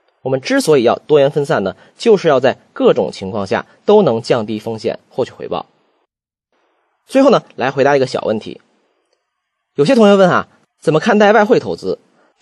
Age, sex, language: 20-39, male, Chinese